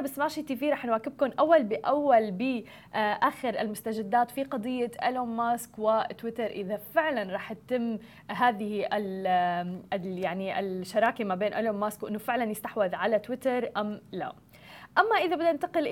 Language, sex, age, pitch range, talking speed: Arabic, female, 20-39, 220-285 Hz, 135 wpm